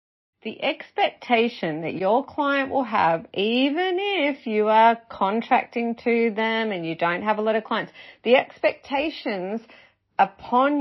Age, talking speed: 40-59, 140 wpm